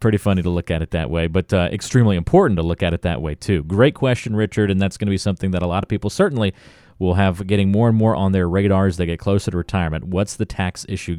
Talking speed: 285 wpm